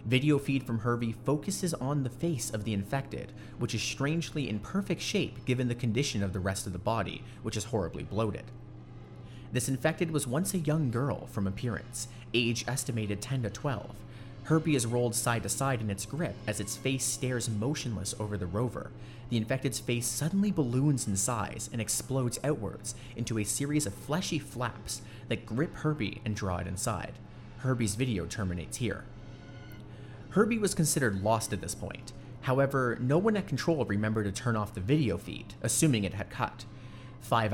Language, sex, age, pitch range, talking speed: English, male, 30-49, 110-140 Hz, 180 wpm